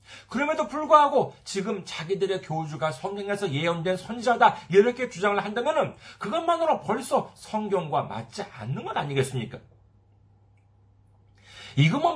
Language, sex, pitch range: Korean, male, 105-160 Hz